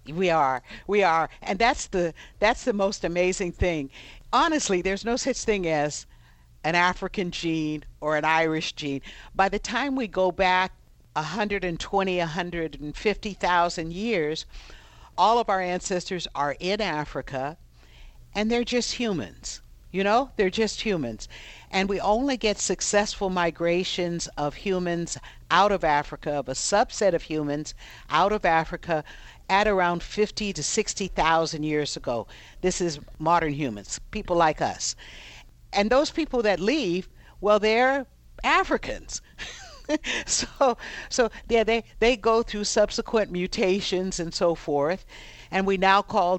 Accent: American